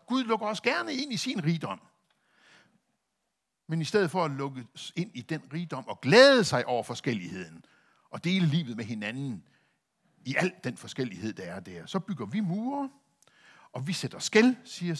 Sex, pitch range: male, 130-215 Hz